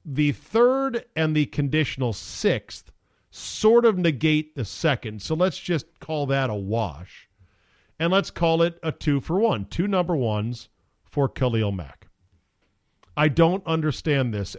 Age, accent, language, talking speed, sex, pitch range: 40-59, American, English, 150 wpm, male, 105-160 Hz